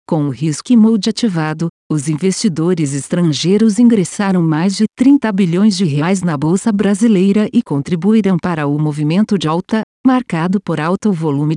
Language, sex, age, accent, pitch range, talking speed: Portuguese, female, 50-69, Brazilian, 155-215 Hz, 155 wpm